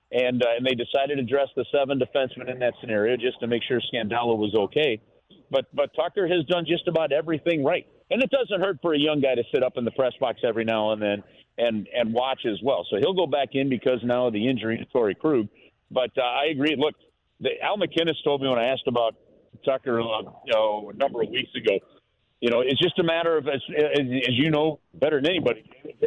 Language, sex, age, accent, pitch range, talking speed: English, male, 50-69, American, 125-165 Hz, 240 wpm